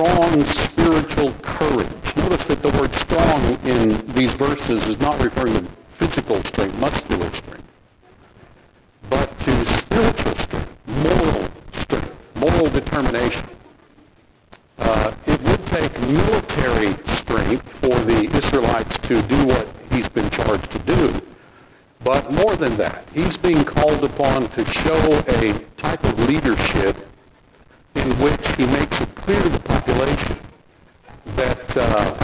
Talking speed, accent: 130 wpm, American